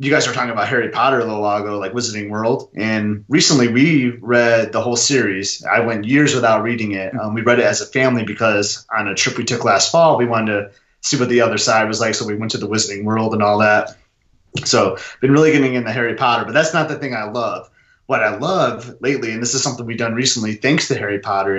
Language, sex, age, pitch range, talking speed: English, male, 30-49, 110-125 Hz, 255 wpm